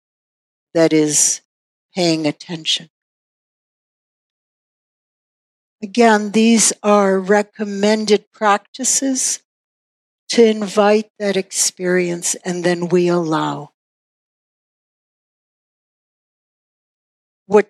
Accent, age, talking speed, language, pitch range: American, 60-79, 60 wpm, English, 175-210 Hz